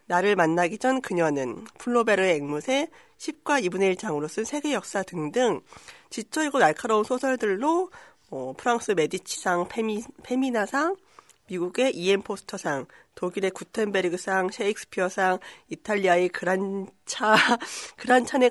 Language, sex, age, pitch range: Korean, female, 40-59, 180-275 Hz